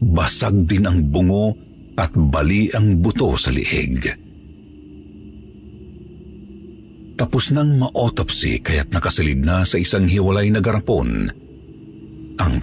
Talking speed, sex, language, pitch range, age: 105 wpm, male, Filipino, 75-105 Hz, 50-69